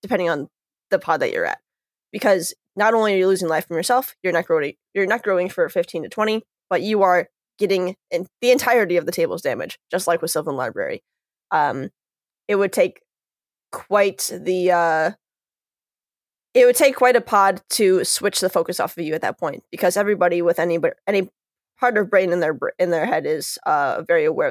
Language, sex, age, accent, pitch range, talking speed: English, female, 10-29, American, 175-230 Hz, 195 wpm